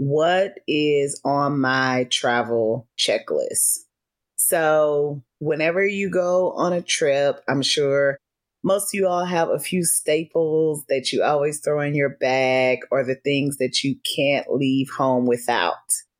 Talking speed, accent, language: 145 wpm, American, English